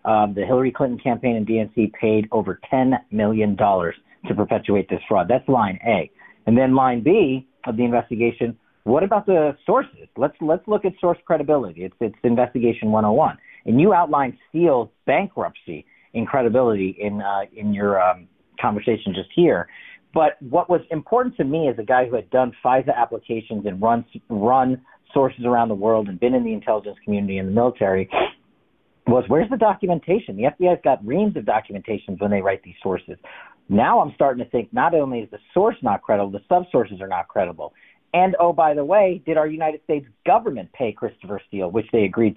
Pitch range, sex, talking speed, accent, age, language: 105-155 Hz, male, 190 wpm, American, 40-59, English